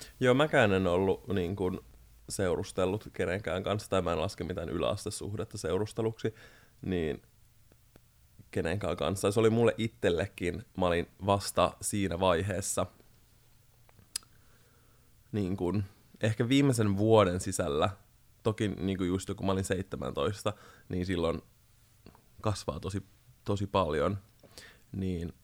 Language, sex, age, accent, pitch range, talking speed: Finnish, male, 20-39, native, 95-110 Hz, 115 wpm